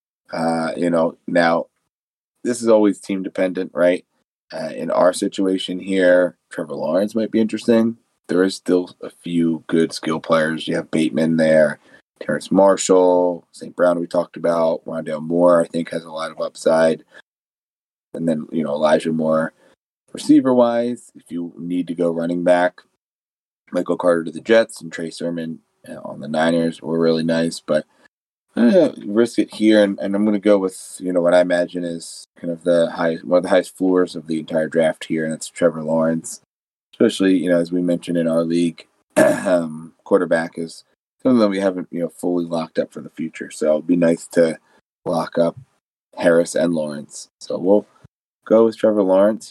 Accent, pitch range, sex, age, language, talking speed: American, 80-95 Hz, male, 30-49, English, 185 wpm